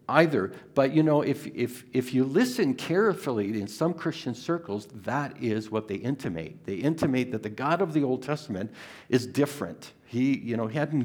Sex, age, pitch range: male, 60-79, 100-130 Hz